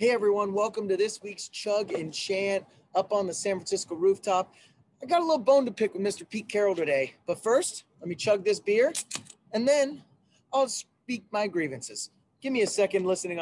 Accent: American